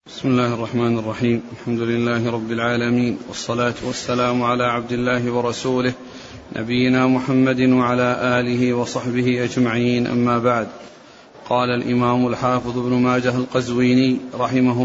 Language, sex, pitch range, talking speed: Arabic, male, 125-135 Hz, 115 wpm